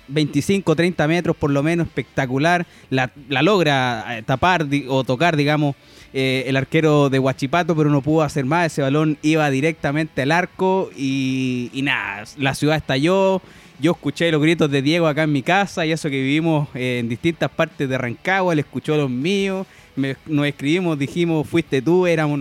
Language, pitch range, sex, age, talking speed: Spanish, 135-170 Hz, male, 20-39, 180 wpm